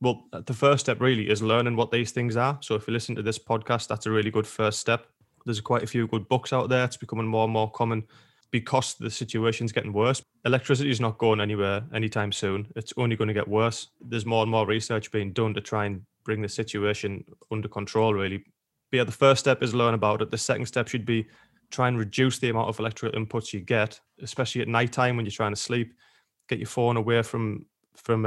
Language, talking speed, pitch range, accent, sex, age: English, 235 wpm, 110-120 Hz, British, male, 20-39